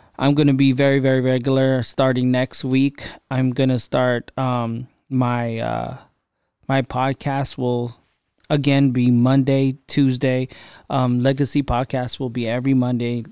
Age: 20-39